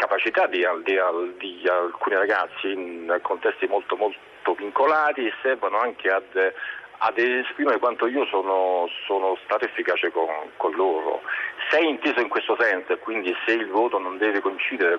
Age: 40-59